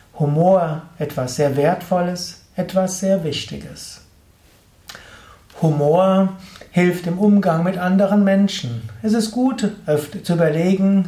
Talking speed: 110 wpm